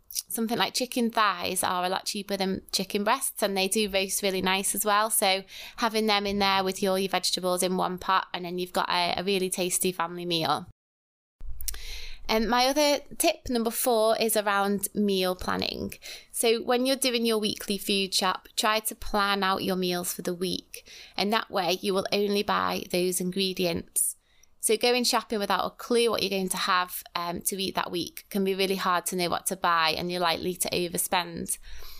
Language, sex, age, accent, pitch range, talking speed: English, female, 20-39, British, 185-220 Hz, 200 wpm